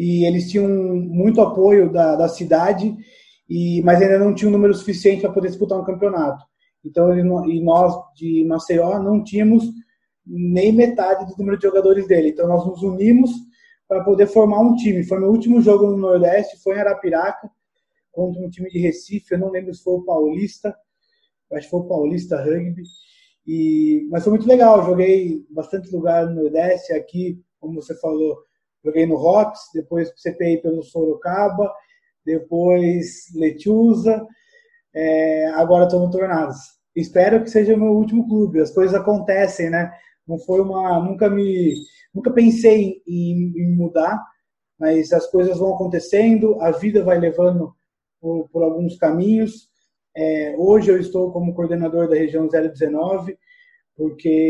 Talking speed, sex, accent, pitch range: 155 wpm, male, Brazilian, 170-210 Hz